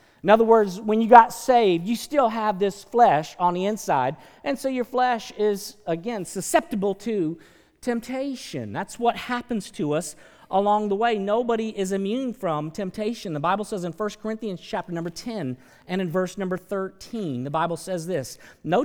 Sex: male